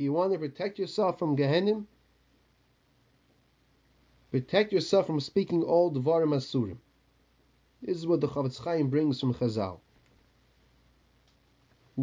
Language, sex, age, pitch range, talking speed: English, male, 30-49, 135-180 Hz, 115 wpm